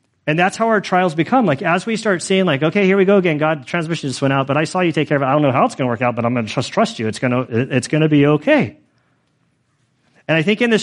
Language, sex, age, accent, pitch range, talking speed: English, male, 40-59, American, 130-180 Hz, 315 wpm